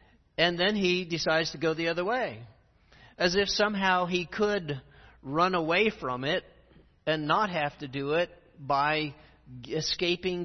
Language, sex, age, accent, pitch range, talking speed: English, male, 50-69, American, 125-175 Hz, 150 wpm